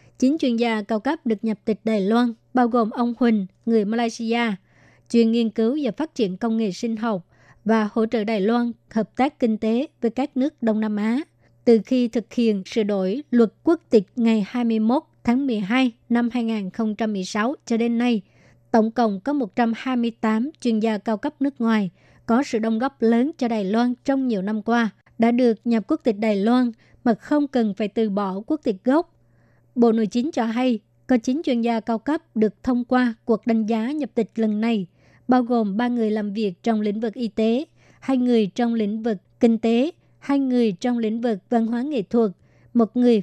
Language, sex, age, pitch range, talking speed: Vietnamese, male, 20-39, 220-245 Hz, 205 wpm